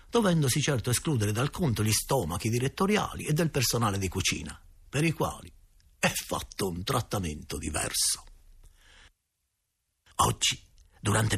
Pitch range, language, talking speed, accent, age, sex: 85-125 Hz, Italian, 120 wpm, native, 50-69, male